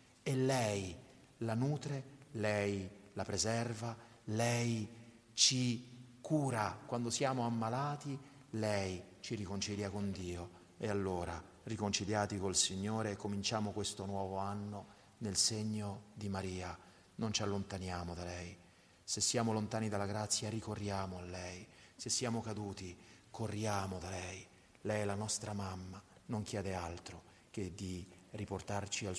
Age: 40-59